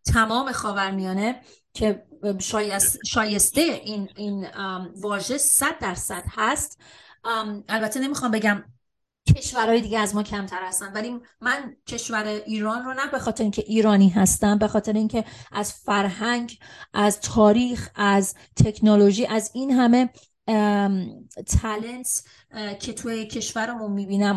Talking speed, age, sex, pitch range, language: 130 wpm, 30-49, female, 205-245 Hz, Persian